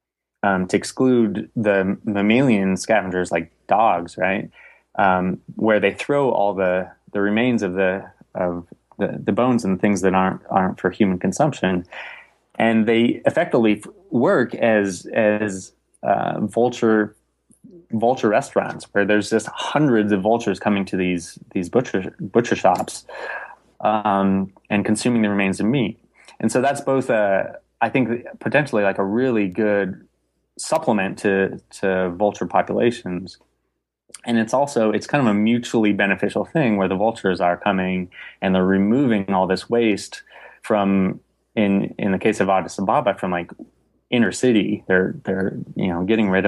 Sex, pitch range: male, 90-110 Hz